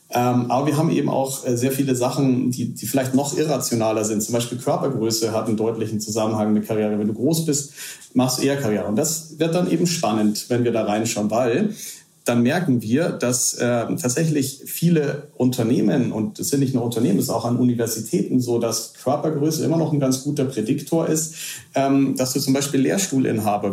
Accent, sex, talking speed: German, male, 195 wpm